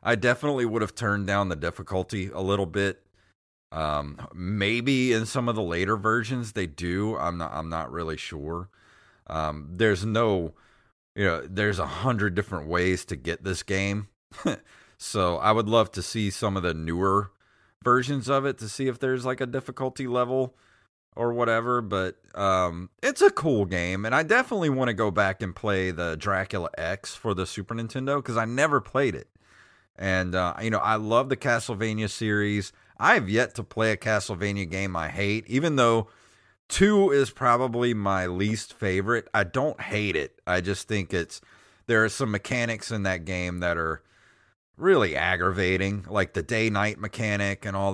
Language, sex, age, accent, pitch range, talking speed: English, male, 30-49, American, 95-115 Hz, 180 wpm